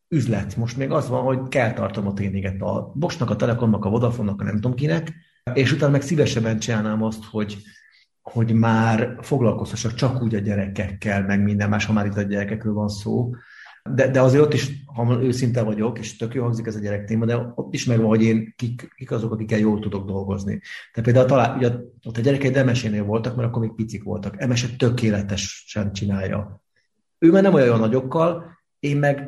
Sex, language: male, Hungarian